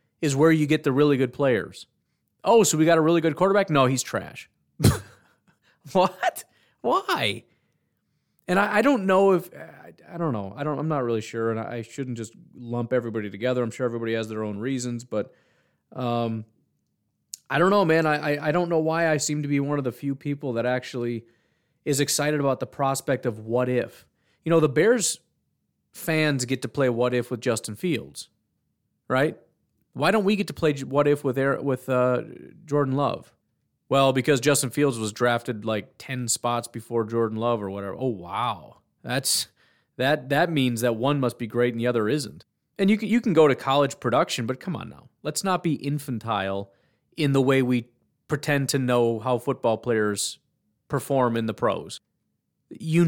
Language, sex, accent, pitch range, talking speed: English, male, American, 120-150 Hz, 195 wpm